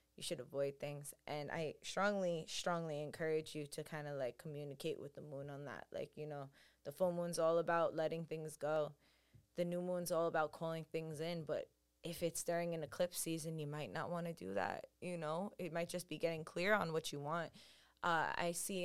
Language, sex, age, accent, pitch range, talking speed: English, female, 20-39, American, 150-170 Hz, 215 wpm